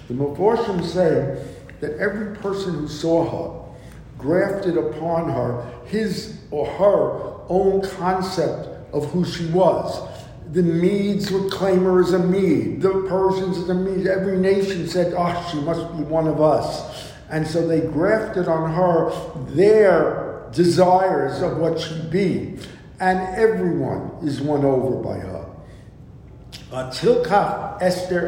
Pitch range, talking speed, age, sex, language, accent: 150-190 Hz, 135 wpm, 60-79, male, English, American